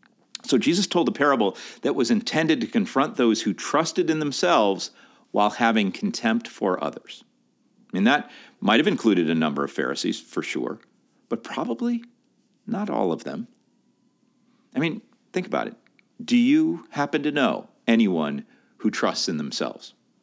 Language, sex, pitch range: English, male, 155-245 Hz